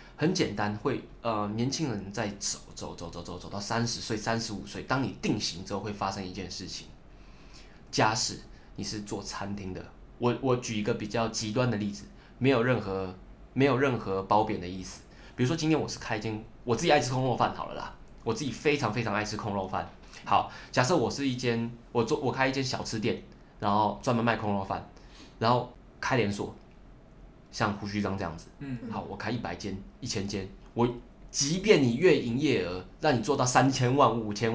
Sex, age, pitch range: male, 20-39, 100-120 Hz